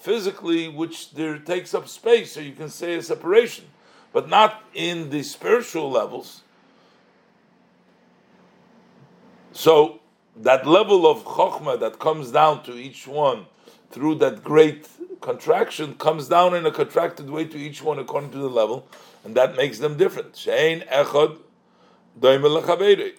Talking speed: 135 wpm